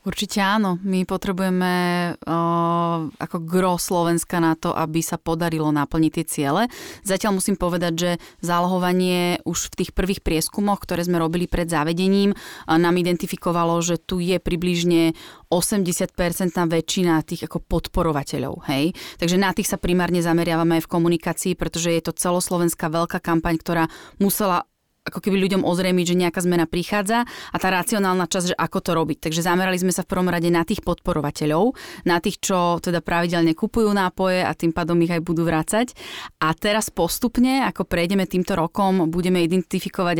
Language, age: Slovak, 30-49